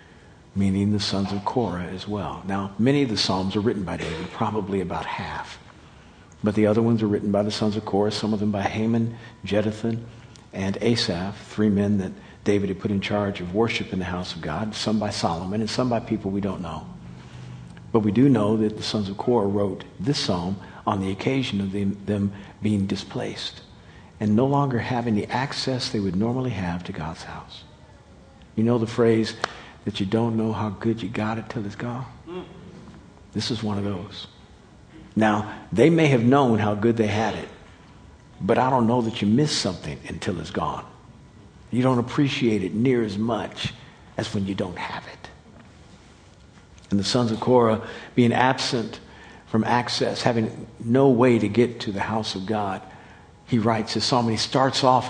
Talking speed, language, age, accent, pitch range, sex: 195 wpm, English, 50-69, American, 100-115 Hz, male